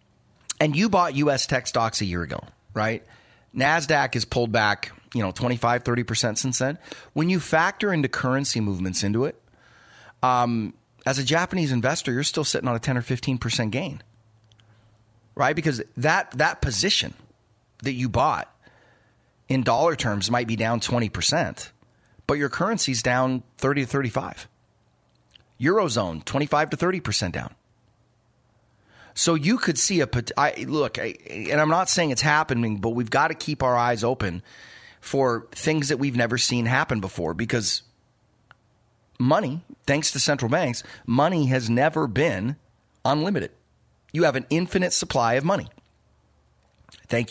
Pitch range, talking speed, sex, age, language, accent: 115-150 Hz, 155 wpm, male, 30-49, English, American